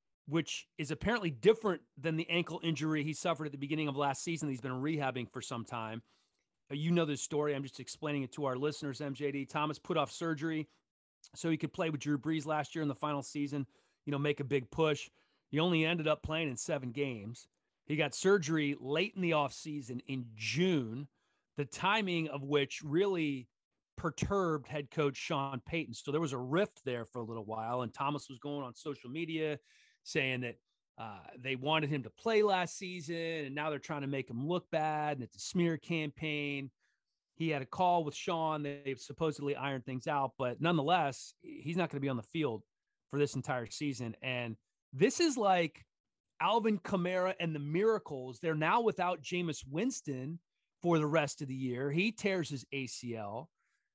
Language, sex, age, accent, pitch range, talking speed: English, male, 30-49, American, 135-170 Hz, 195 wpm